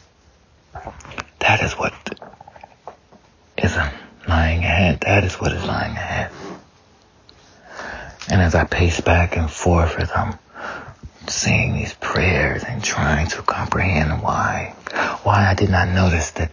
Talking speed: 125 wpm